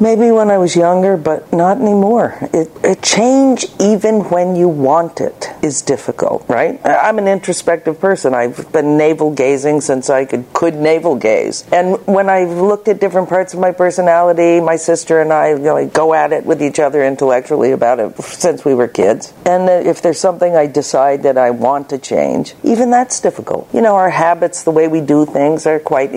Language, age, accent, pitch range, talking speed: English, 50-69, American, 155-200 Hz, 195 wpm